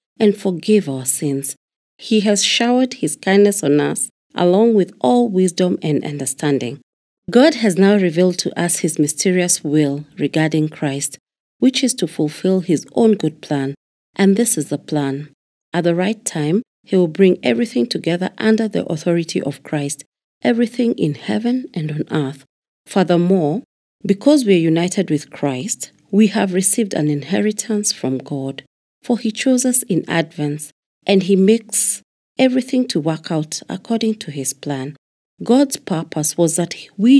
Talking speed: 155 wpm